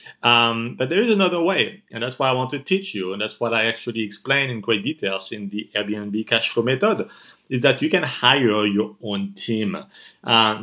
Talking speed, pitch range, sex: 215 wpm, 105-135 Hz, male